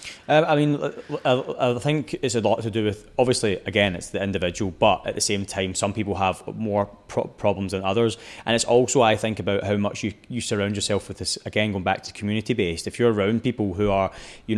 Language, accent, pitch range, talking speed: English, British, 100-130 Hz, 225 wpm